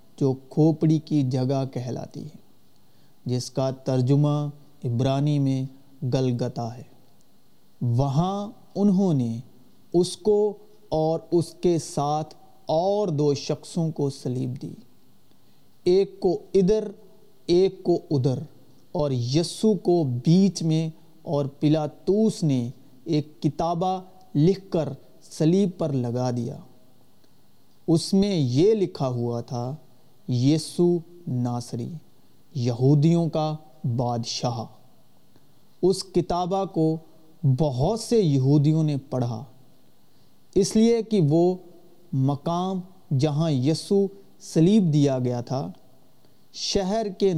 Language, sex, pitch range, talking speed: Urdu, male, 135-180 Hz, 105 wpm